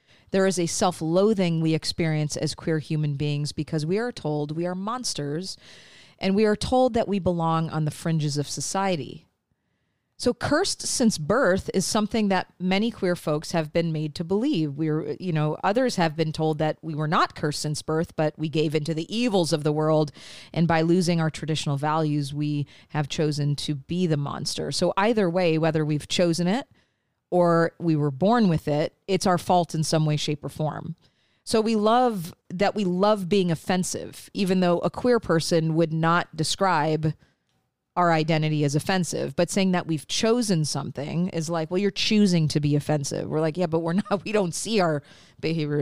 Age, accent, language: 40-59, American, English